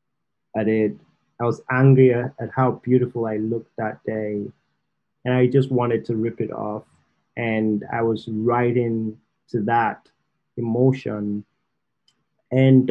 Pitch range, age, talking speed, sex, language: 110-130 Hz, 30-49, 135 wpm, male, English